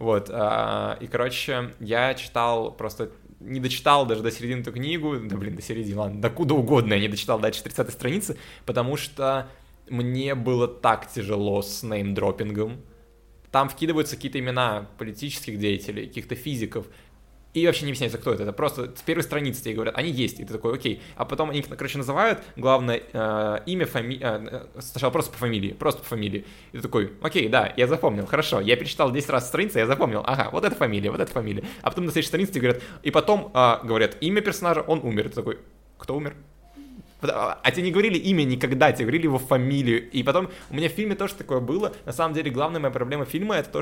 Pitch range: 115-150 Hz